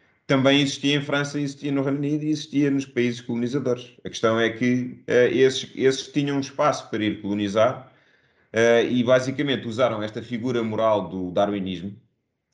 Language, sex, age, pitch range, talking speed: Portuguese, male, 30-49, 100-135 Hz, 165 wpm